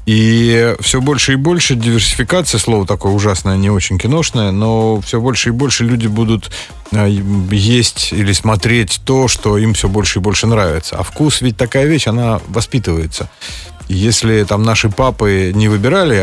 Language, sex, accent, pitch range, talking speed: Russian, male, native, 95-125 Hz, 160 wpm